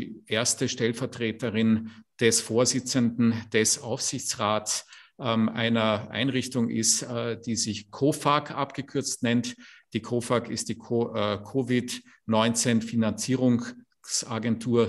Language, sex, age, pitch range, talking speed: English, male, 50-69, 110-125 Hz, 95 wpm